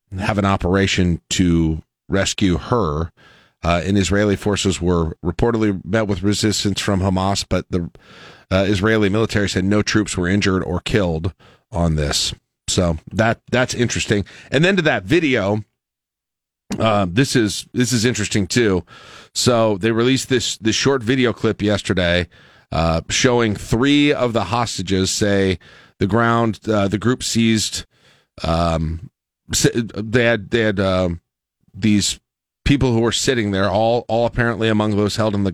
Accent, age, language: American, 40-59, English